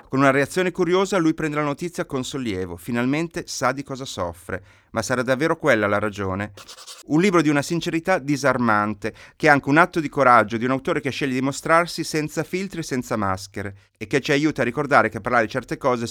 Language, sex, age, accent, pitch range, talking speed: Italian, male, 30-49, native, 110-160 Hz, 210 wpm